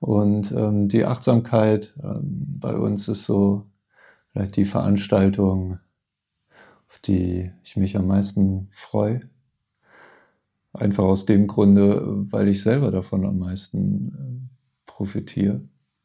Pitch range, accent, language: 100-115 Hz, German, German